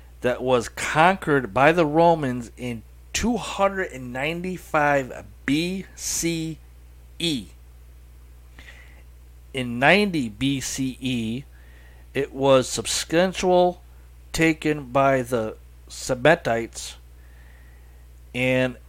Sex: male